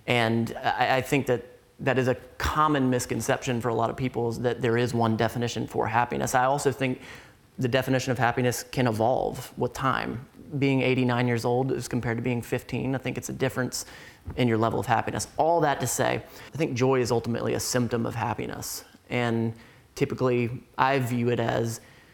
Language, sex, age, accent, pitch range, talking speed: English, male, 30-49, American, 120-135 Hz, 190 wpm